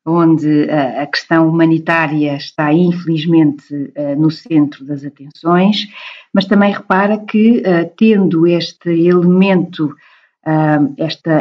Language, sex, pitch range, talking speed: Portuguese, female, 155-185 Hz, 95 wpm